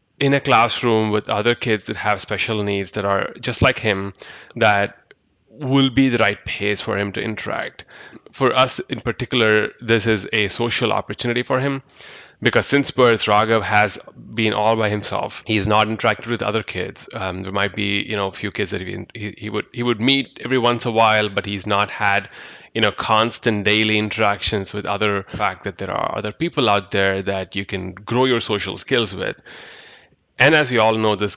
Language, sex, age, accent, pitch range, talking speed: English, male, 30-49, Indian, 100-120 Hz, 205 wpm